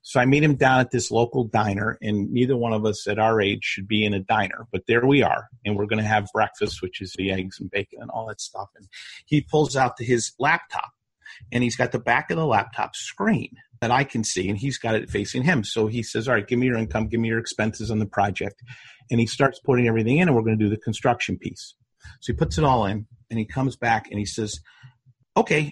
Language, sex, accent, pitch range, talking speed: English, male, American, 110-135 Hz, 260 wpm